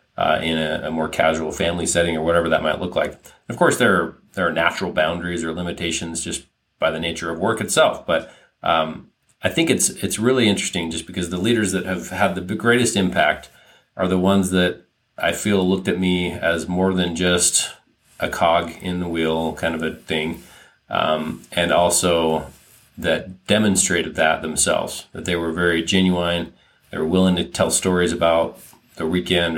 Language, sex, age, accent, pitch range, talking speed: English, male, 30-49, American, 85-95 Hz, 185 wpm